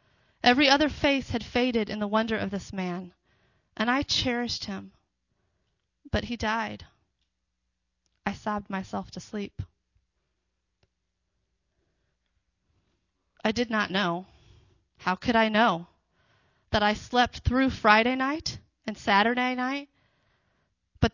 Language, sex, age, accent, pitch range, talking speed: English, female, 30-49, American, 175-240 Hz, 115 wpm